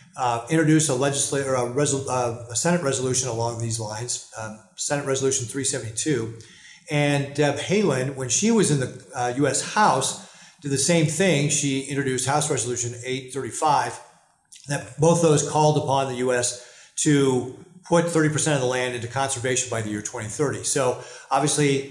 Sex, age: male, 40-59